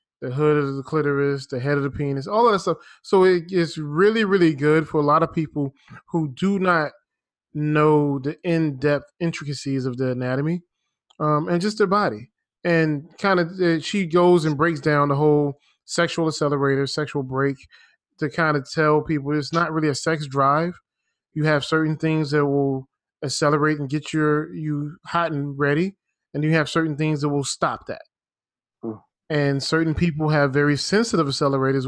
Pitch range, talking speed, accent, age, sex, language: 145-165 Hz, 185 wpm, American, 20-39, male, English